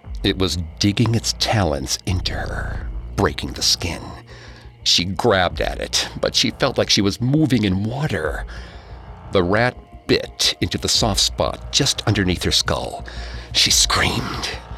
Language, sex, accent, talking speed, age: English, male, American, 145 wpm, 50-69